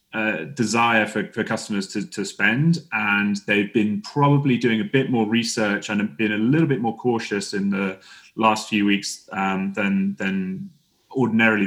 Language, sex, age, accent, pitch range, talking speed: English, male, 30-49, British, 105-130 Hz, 175 wpm